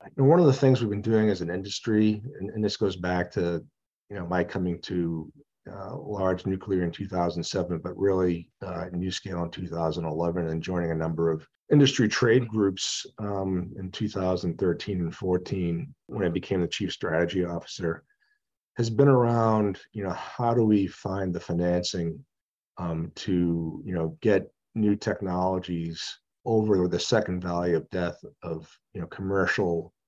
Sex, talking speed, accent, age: male, 165 wpm, American, 40-59